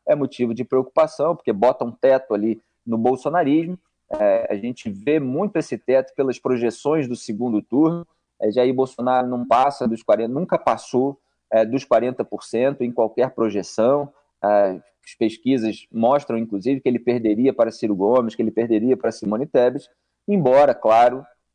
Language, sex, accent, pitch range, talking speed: Portuguese, male, Brazilian, 125-170 Hz, 160 wpm